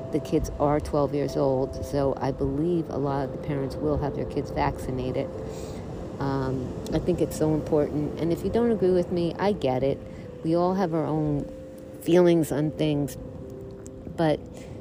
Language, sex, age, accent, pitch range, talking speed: English, female, 50-69, American, 135-170 Hz, 180 wpm